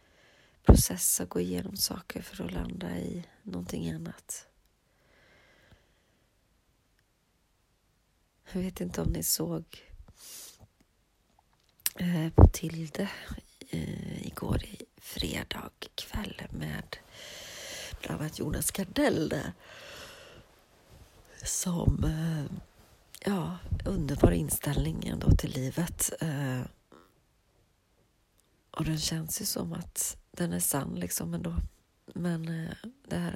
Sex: female